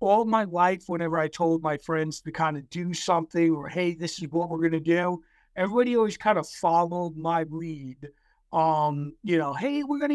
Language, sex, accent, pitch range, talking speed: English, male, American, 155-180 Hz, 205 wpm